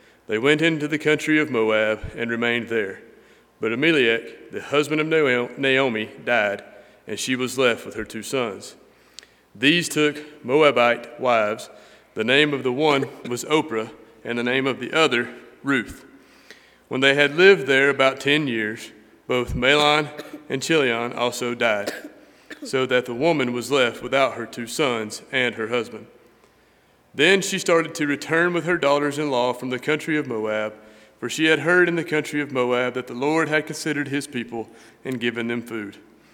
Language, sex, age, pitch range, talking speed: English, male, 30-49, 120-150 Hz, 170 wpm